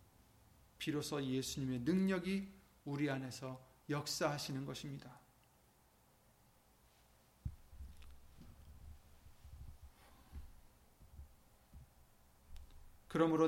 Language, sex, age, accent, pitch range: Korean, male, 30-49, native, 115-170 Hz